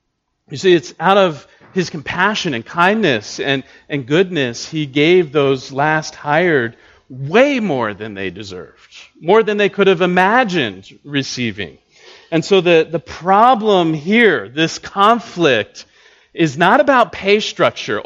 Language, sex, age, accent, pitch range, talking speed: English, male, 40-59, American, 130-185 Hz, 140 wpm